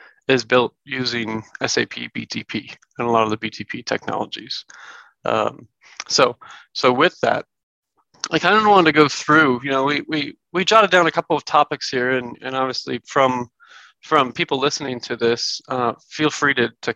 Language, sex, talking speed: English, male, 175 wpm